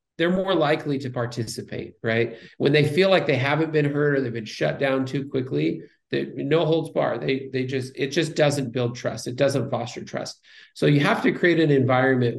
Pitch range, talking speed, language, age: 120-140 Hz, 215 wpm, English, 40-59